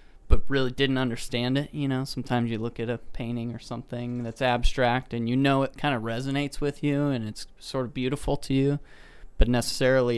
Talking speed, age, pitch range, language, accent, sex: 205 wpm, 20-39, 115-140 Hz, English, American, male